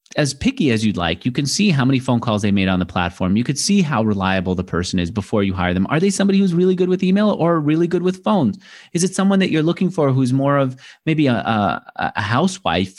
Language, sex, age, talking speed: English, male, 30-49, 260 wpm